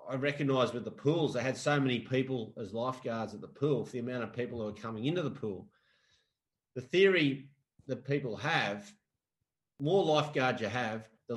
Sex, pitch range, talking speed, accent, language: male, 120-145 Hz, 190 wpm, Australian, English